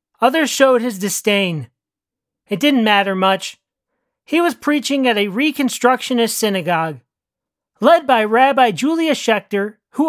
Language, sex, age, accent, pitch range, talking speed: English, male, 40-59, American, 215-275 Hz, 125 wpm